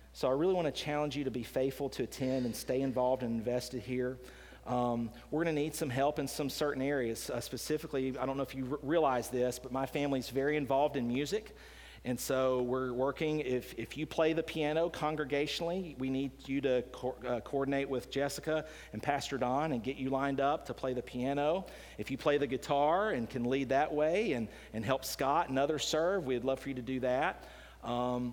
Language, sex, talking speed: English, male, 215 wpm